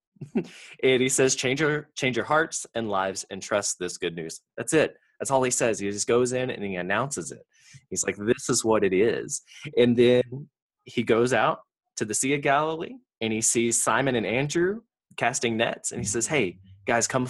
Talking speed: 210 wpm